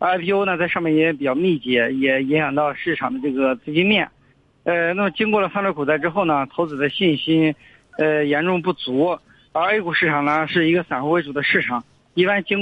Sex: male